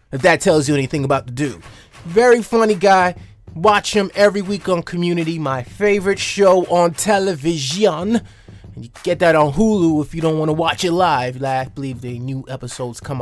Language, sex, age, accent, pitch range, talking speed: English, male, 20-39, American, 150-210 Hz, 180 wpm